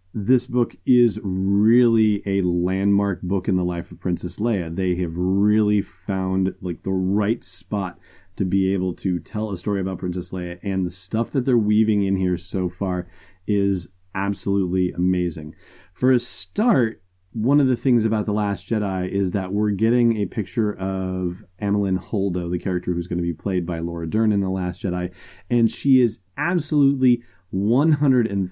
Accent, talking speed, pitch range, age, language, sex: American, 175 wpm, 90-110 Hz, 30-49, English, male